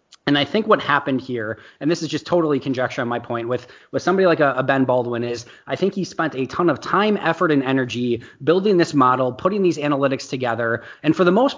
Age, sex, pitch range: 20-39, male, 130-160 Hz